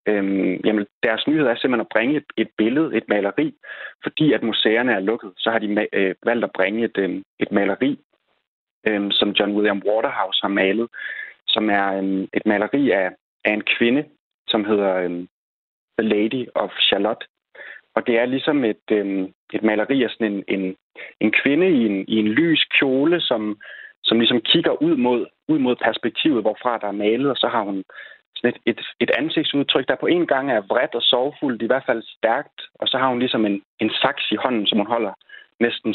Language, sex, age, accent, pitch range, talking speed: Danish, male, 30-49, native, 105-125 Hz, 180 wpm